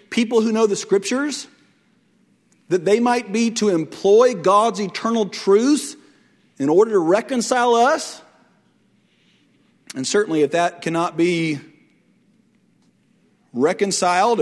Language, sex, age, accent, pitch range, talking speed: English, male, 40-59, American, 175-220 Hz, 110 wpm